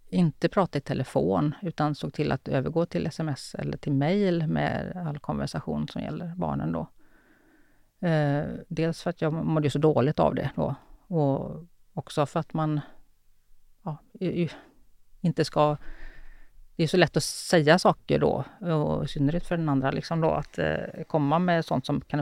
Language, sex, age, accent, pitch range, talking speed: Swedish, female, 40-59, native, 150-190 Hz, 165 wpm